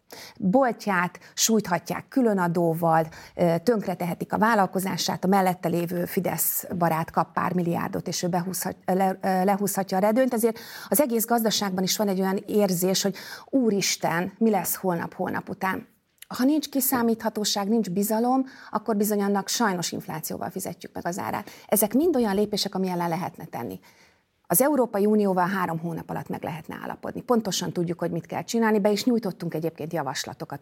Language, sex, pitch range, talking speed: Hungarian, female, 175-230 Hz, 155 wpm